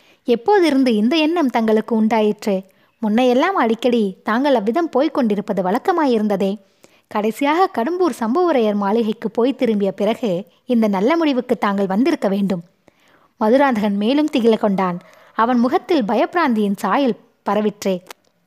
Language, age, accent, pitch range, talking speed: Tamil, 20-39, native, 210-270 Hz, 110 wpm